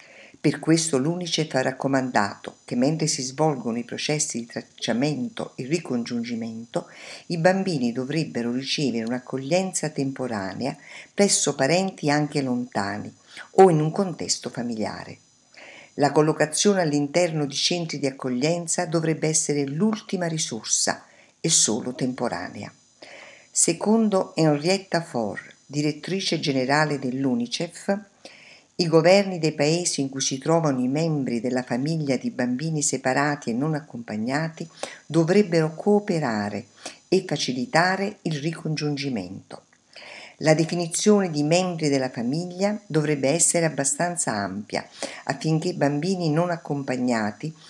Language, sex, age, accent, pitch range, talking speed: Italian, female, 50-69, native, 130-170 Hz, 110 wpm